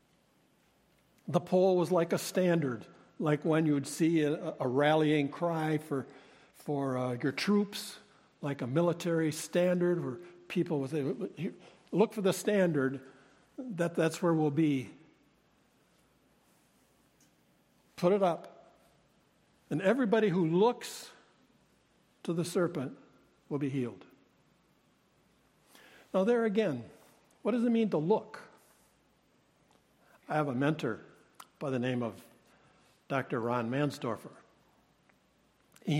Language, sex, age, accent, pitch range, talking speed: English, male, 60-79, American, 140-190 Hz, 115 wpm